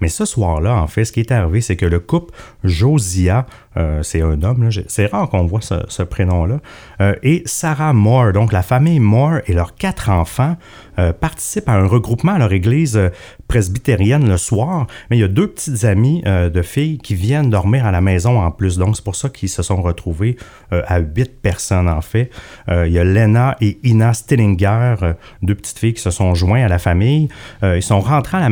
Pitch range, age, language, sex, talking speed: 95-125 Hz, 30-49, French, male, 210 wpm